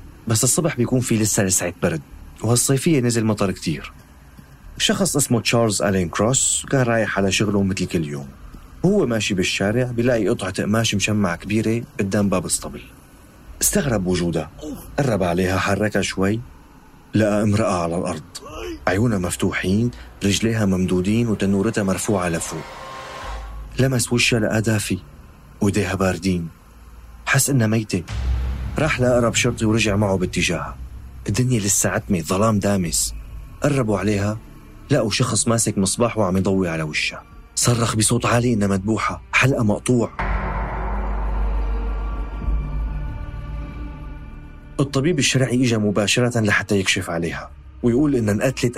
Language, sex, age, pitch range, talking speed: Arabic, male, 40-59, 90-115 Hz, 120 wpm